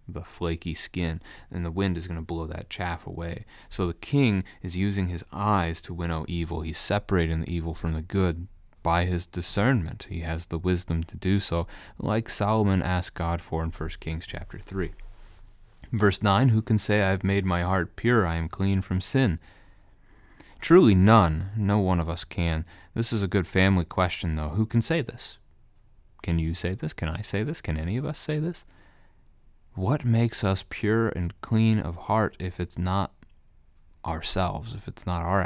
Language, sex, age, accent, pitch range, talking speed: English, male, 30-49, American, 85-100 Hz, 190 wpm